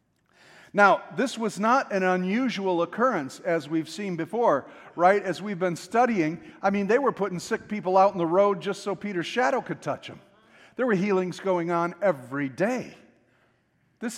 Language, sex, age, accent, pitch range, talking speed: English, male, 50-69, American, 165-200 Hz, 180 wpm